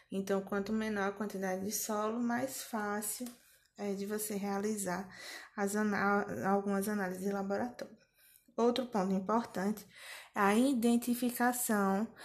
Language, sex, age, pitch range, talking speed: Portuguese, female, 20-39, 200-235 Hz, 120 wpm